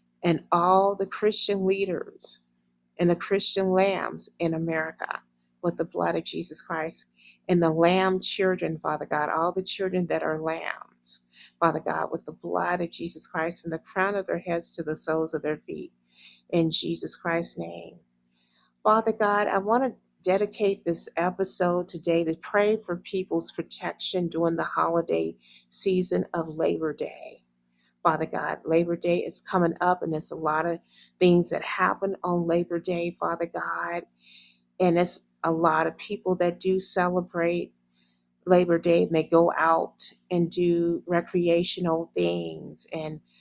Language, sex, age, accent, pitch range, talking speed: English, female, 40-59, American, 150-185 Hz, 155 wpm